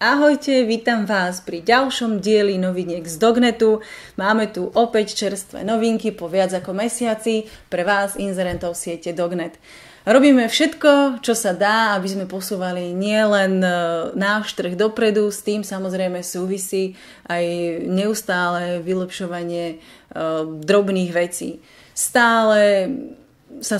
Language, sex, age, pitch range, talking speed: Slovak, female, 30-49, 180-215 Hz, 120 wpm